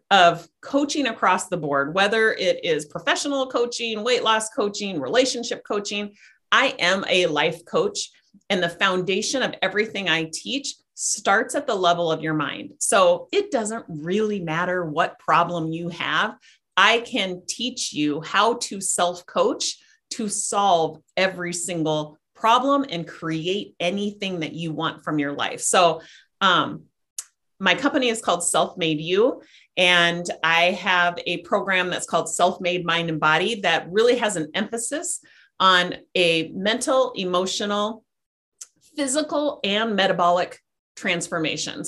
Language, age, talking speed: English, 30-49, 140 wpm